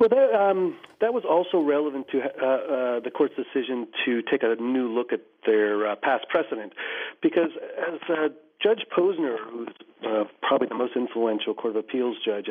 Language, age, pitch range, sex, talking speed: English, 40-59, 115-165 Hz, male, 180 wpm